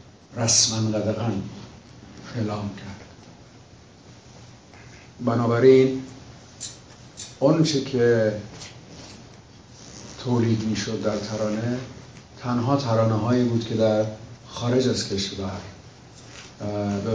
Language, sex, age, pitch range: Persian, male, 50-69, 100-120 Hz